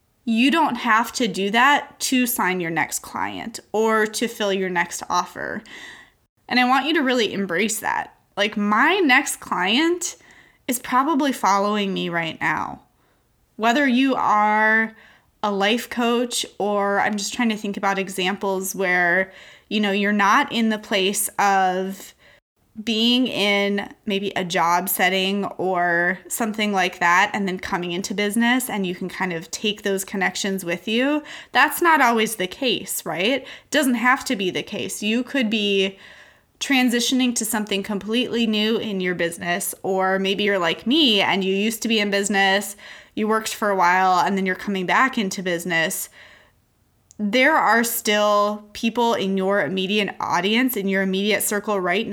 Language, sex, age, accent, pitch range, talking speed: English, female, 20-39, American, 190-235 Hz, 165 wpm